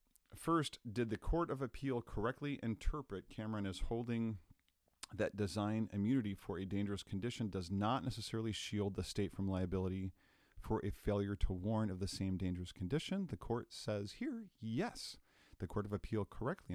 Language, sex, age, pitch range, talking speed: English, male, 40-59, 95-120 Hz, 165 wpm